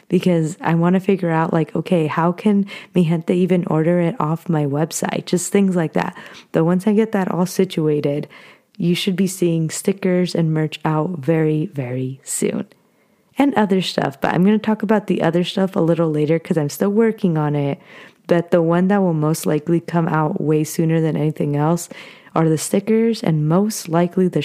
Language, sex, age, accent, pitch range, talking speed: English, female, 20-39, American, 160-200 Hz, 200 wpm